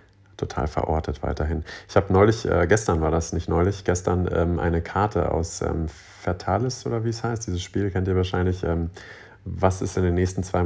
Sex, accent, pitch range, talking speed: male, German, 85-100 Hz, 195 wpm